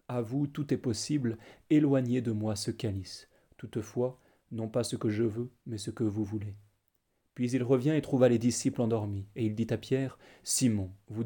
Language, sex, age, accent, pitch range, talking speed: French, male, 30-49, French, 110-130 Hz, 195 wpm